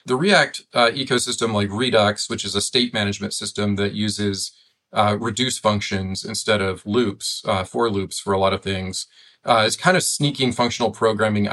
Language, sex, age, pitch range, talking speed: English, male, 30-49, 100-115 Hz, 180 wpm